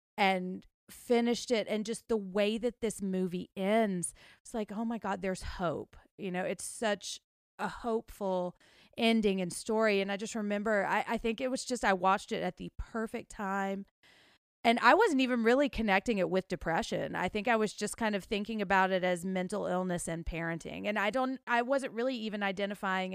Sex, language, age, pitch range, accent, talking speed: female, English, 30-49, 180-220 Hz, American, 195 wpm